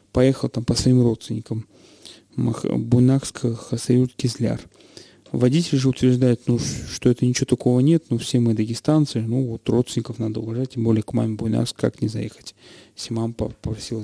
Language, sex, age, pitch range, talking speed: Russian, male, 30-49, 115-140 Hz, 160 wpm